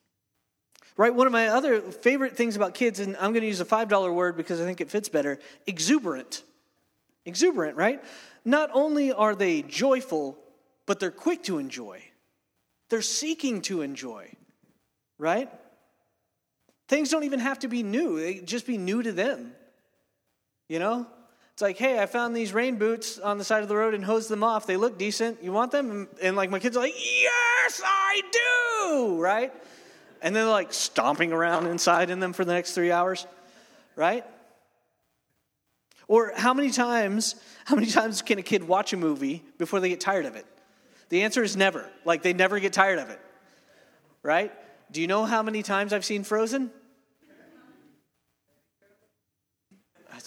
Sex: male